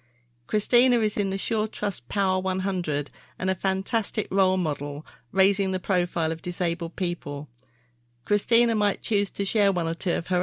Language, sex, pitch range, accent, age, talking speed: English, female, 155-195 Hz, British, 40-59, 160 wpm